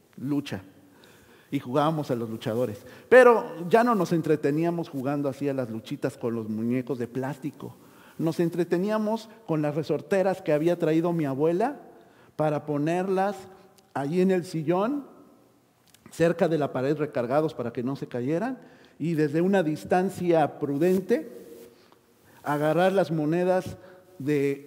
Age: 50-69